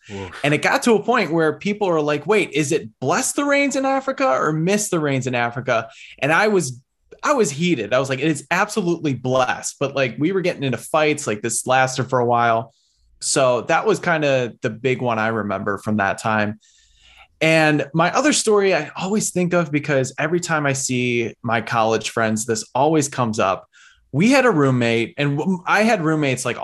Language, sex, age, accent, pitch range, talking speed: English, male, 20-39, American, 115-155 Hz, 205 wpm